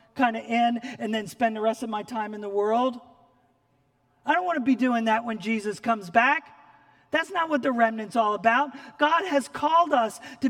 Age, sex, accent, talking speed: 40-59, male, American, 205 wpm